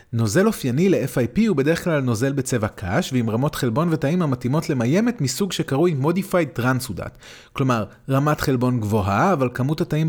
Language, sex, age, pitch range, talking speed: Hebrew, male, 30-49, 110-165 Hz, 155 wpm